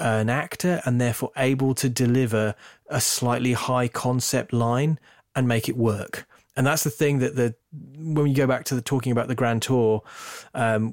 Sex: male